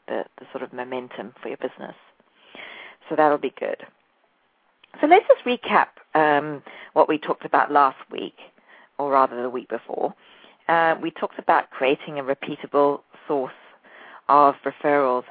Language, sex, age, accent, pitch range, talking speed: English, female, 40-59, British, 130-150 Hz, 150 wpm